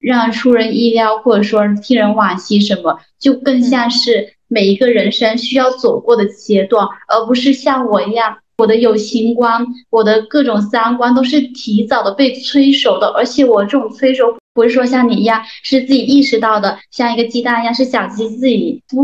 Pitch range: 220-270 Hz